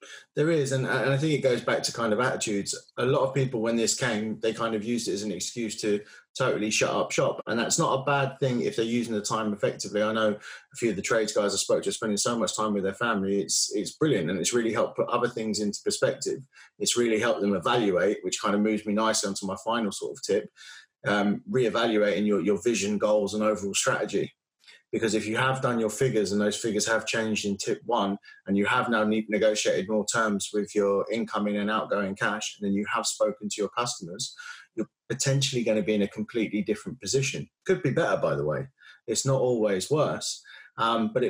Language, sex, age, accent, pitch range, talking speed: English, male, 20-39, British, 105-125 Hz, 230 wpm